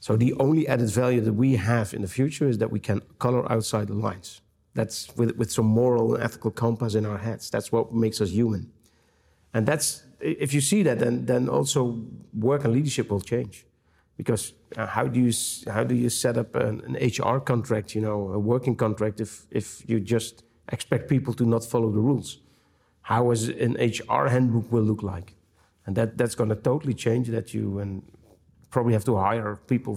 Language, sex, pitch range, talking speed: Czech, male, 105-125 Hz, 200 wpm